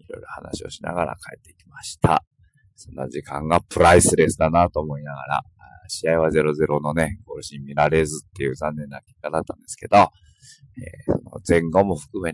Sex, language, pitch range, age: male, Japanese, 85-115 Hz, 50-69